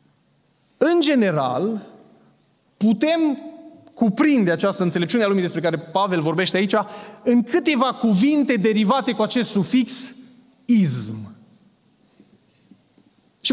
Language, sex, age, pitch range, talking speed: Romanian, male, 30-49, 195-255 Hz, 100 wpm